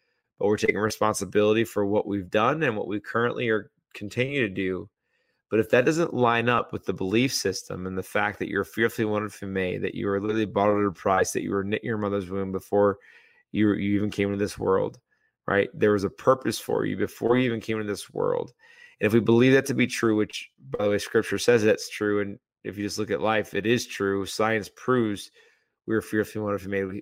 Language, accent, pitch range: English, American, 100-120 Hz